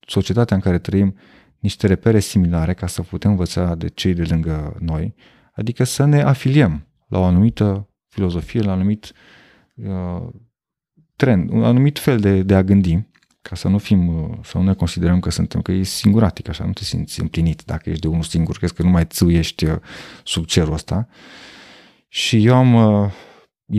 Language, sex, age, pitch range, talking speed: Romanian, male, 30-49, 85-110 Hz, 180 wpm